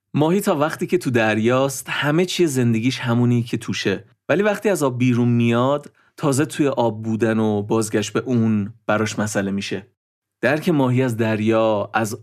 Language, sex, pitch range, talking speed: Persian, male, 110-145 Hz, 165 wpm